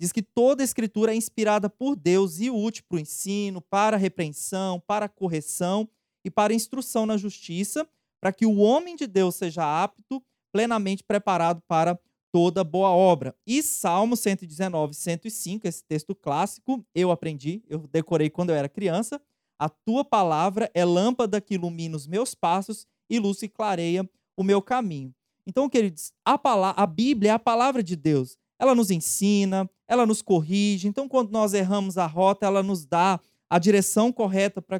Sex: male